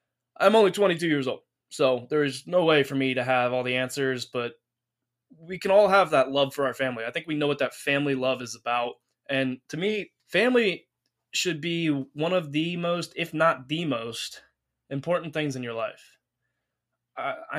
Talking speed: 195 wpm